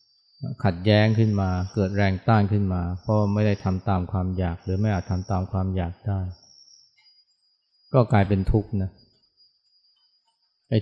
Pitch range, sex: 95-110 Hz, male